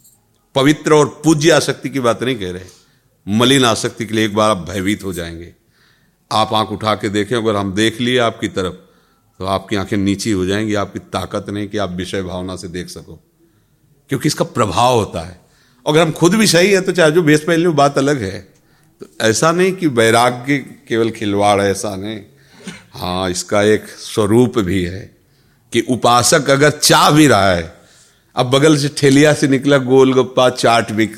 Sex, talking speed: male, 185 wpm